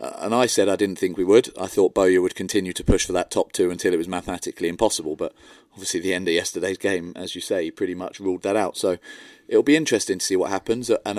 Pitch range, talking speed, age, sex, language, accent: 90-105 Hz, 255 wpm, 30-49, male, English, British